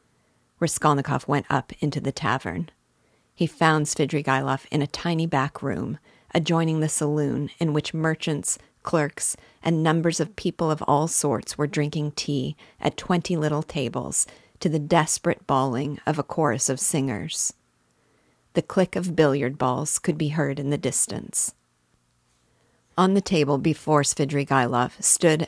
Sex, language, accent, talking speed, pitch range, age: female, English, American, 145 wpm, 135-160 Hz, 40-59